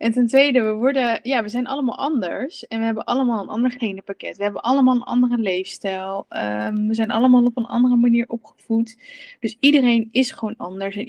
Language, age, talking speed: Dutch, 20-39, 205 wpm